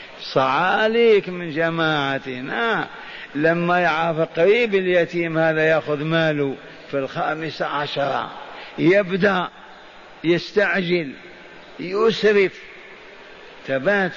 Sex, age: male, 50-69